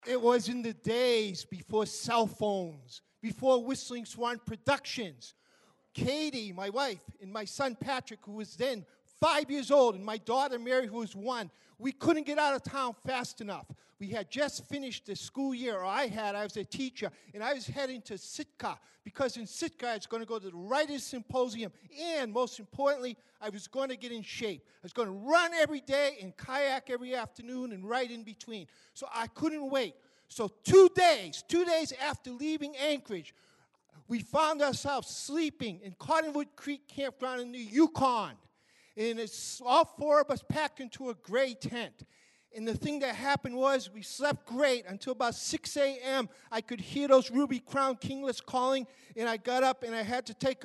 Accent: American